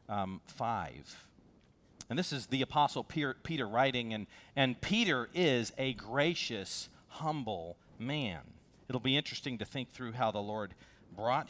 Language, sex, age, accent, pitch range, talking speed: English, male, 40-59, American, 105-130 Hz, 140 wpm